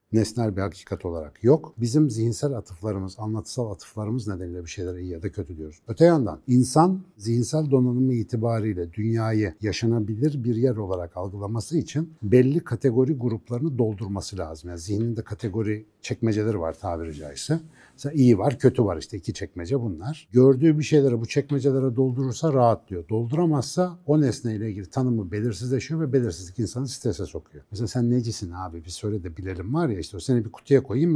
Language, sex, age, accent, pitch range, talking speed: Turkish, male, 60-79, native, 100-130 Hz, 170 wpm